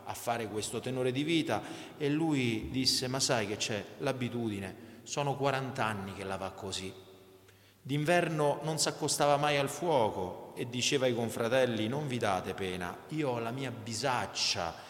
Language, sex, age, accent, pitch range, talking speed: Italian, male, 30-49, native, 100-135 Hz, 165 wpm